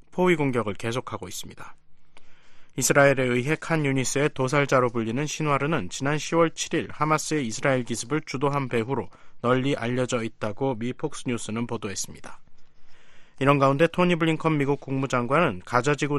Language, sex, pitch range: Korean, male, 120-150 Hz